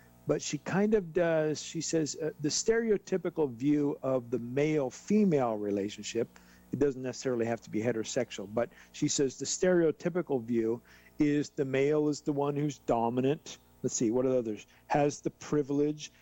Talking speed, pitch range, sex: 165 wpm, 115-145 Hz, male